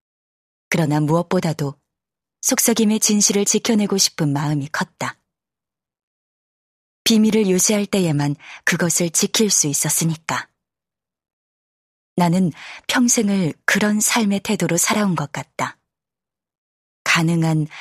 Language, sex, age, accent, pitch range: Korean, female, 20-39, native, 155-205 Hz